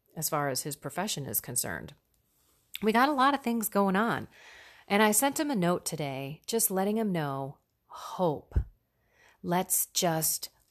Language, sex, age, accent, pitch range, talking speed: English, female, 40-59, American, 155-215 Hz, 165 wpm